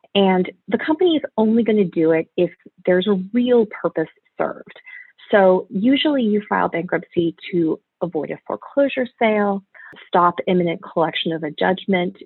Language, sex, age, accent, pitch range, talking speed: English, female, 30-49, American, 170-240 Hz, 150 wpm